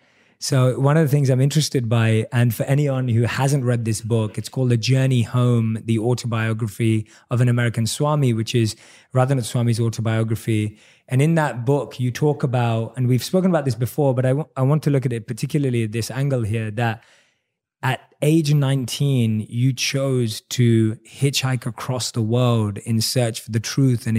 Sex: male